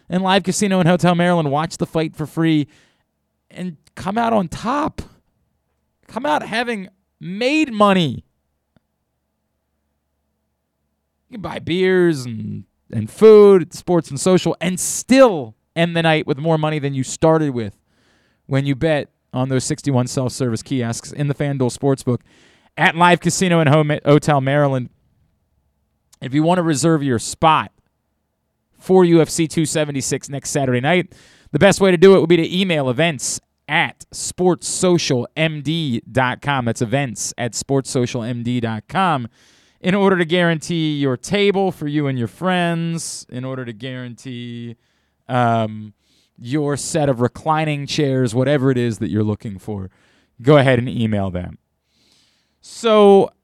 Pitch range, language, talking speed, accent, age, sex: 120-175 Hz, English, 145 wpm, American, 20-39, male